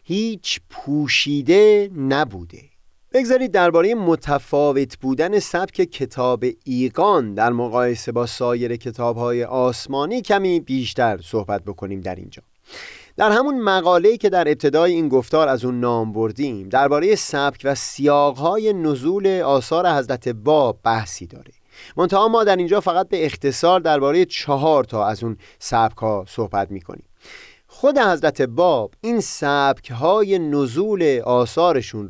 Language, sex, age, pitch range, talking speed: Persian, male, 30-49, 120-180 Hz, 125 wpm